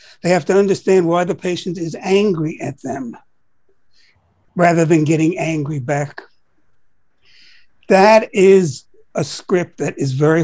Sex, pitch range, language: male, 150-185 Hz, English